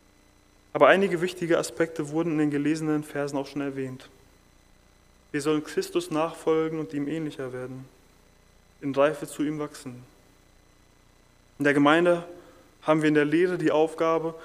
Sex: male